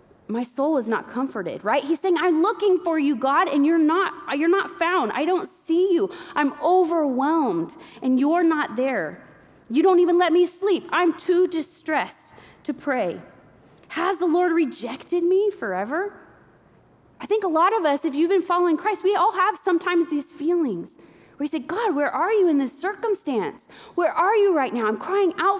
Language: English